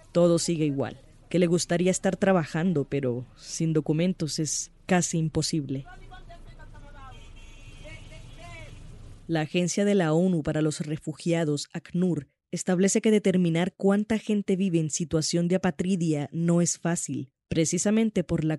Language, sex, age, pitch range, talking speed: English, female, 20-39, 155-180 Hz, 125 wpm